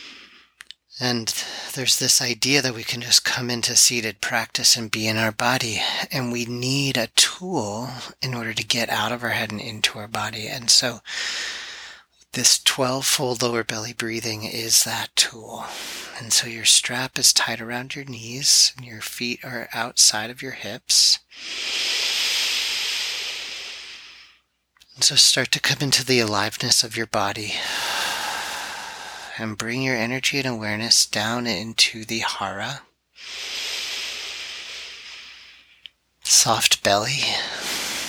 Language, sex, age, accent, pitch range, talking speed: English, male, 30-49, American, 110-130 Hz, 130 wpm